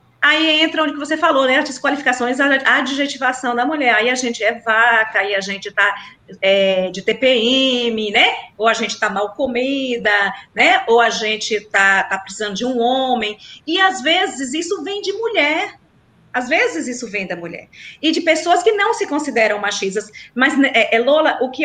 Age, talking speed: 40-59, 185 wpm